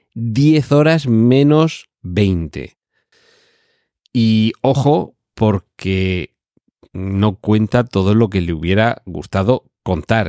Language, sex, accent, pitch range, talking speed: Spanish, male, Spanish, 90-110 Hz, 95 wpm